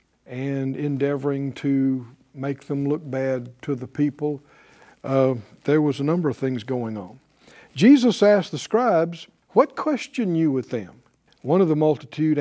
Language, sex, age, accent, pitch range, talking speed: English, male, 50-69, American, 140-195 Hz, 155 wpm